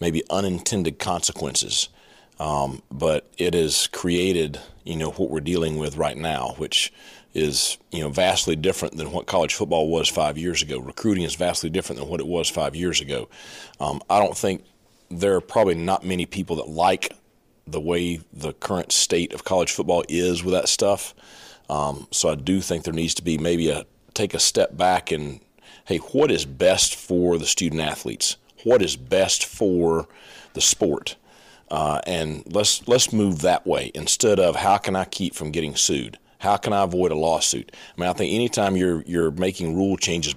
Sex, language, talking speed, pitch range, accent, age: male, English, 190 wpm, 80-95 Hz, American, 40-59